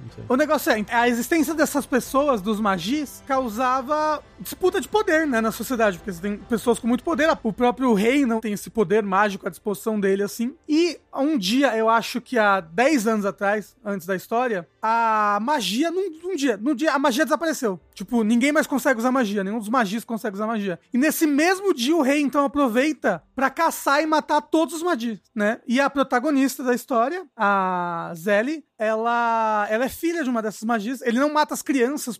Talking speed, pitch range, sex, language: 200 wpm, 215-270 Hz, male, Portuguese